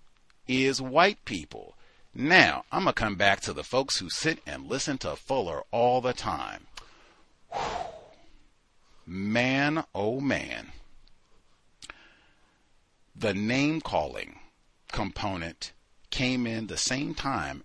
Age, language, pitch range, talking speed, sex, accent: 40-59, English, 100-140 Hz, 110 wpm, male, American